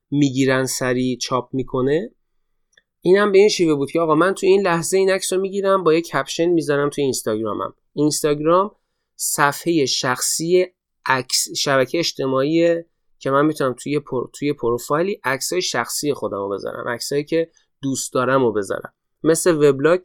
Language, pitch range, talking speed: Persian, 130-170 Hz, 145 wpm